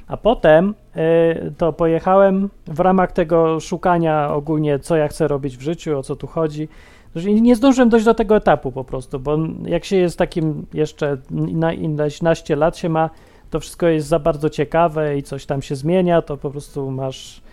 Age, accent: 30-49, native